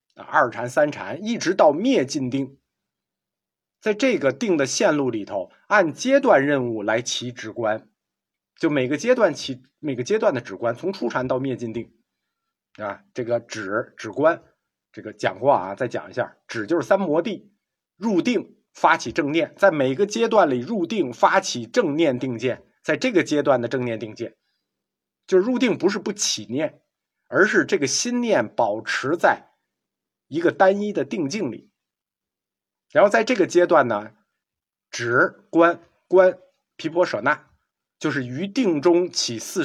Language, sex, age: Chinese, male, 50-69